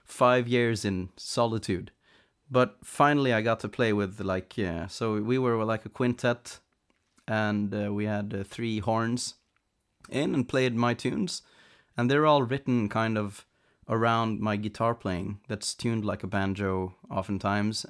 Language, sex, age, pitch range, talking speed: English, male, 30-49, 100-120 Hz, 160 wpm